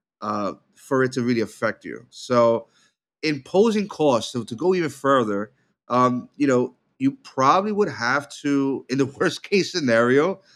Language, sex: English, male